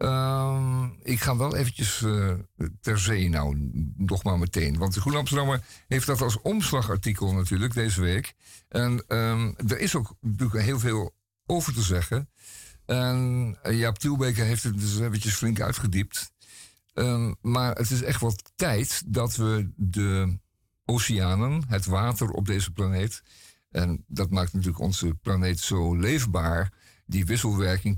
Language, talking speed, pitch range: Dutch, 145 wpm, 95-115 Hz